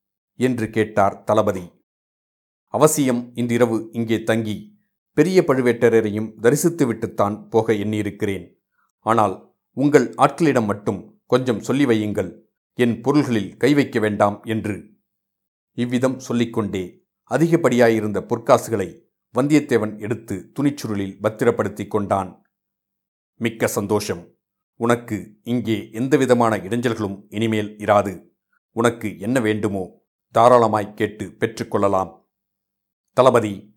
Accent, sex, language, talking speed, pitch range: native, male, Tamil, 85 wpm, 105-125 Hz